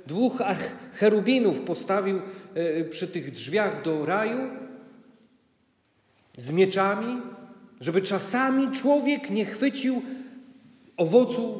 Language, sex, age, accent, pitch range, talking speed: Polish, male, 40-59, native, 155-225 Hz, 85 wpm